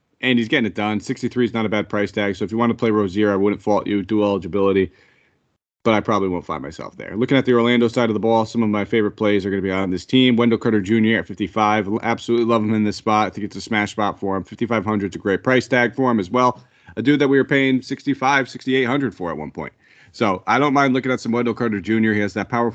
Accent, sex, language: American, male, English